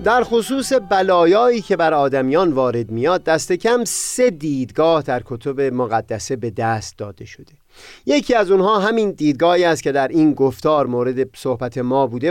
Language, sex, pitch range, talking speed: Persian, male, 130-190 Hz, 160 wpm